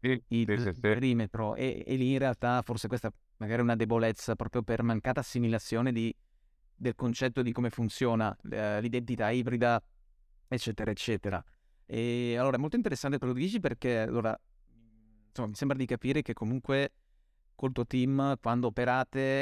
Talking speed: 160 wpm